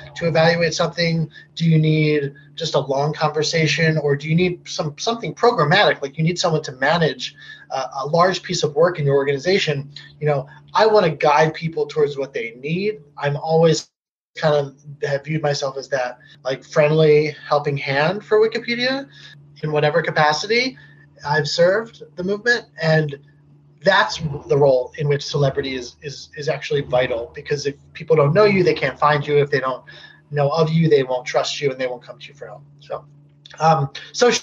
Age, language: 20-39, English